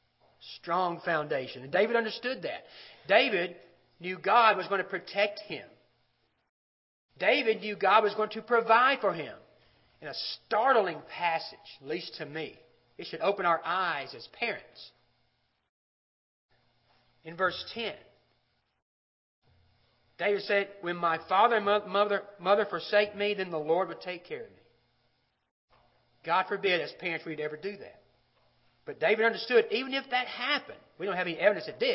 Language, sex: English, male